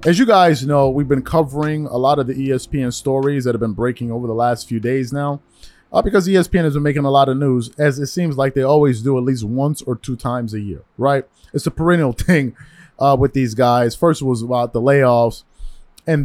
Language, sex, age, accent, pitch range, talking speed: English, male, 20-39, American, 125-150 Hz, 235 wpm